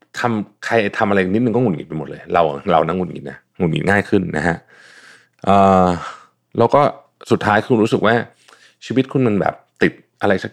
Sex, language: male, Thai